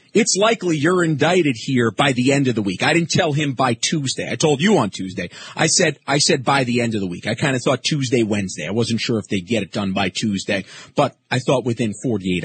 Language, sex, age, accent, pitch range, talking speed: English, male, 40-59, American, 115-165 Hz, 255 wpm